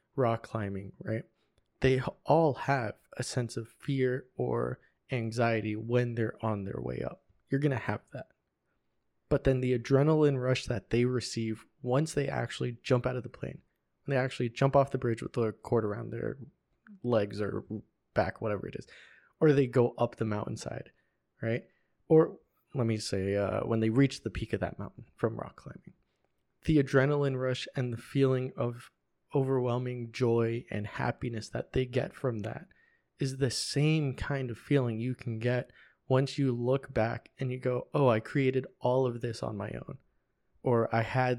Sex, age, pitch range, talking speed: male, 20-39, 115-130 Hz, 180 wpm